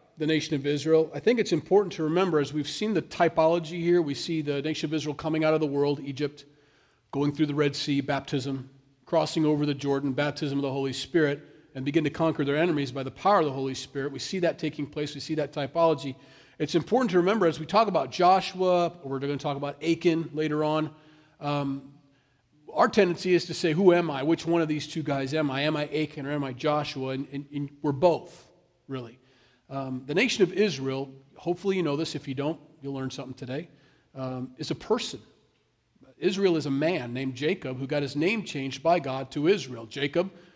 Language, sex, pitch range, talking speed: English, male, 140-170 Hz, 220 wpm